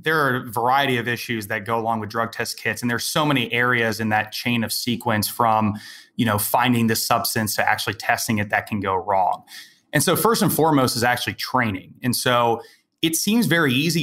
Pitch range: 115-145 Hz